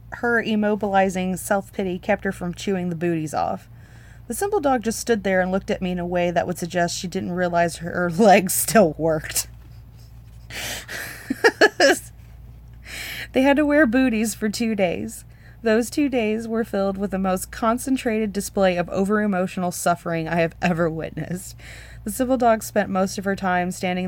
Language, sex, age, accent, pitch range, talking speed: English, female, 30-49, American, 175-215 Hz, 165 wpm